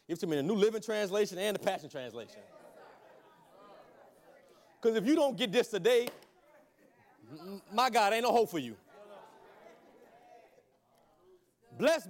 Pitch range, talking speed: 190-265 Hz, 130 wpm